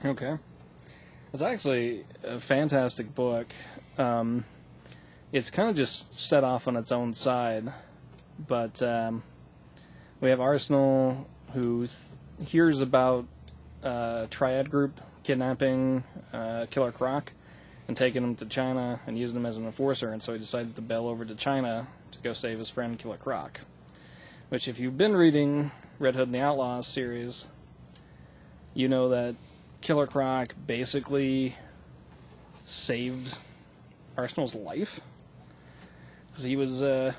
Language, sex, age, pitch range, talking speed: English, male, 20-39, 115-135 Hz, 135 wpm